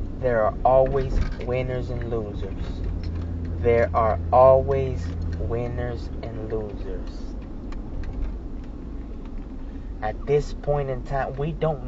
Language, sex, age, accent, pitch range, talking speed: English, male, 20-39, American, 110-145 Hz, 95 wpm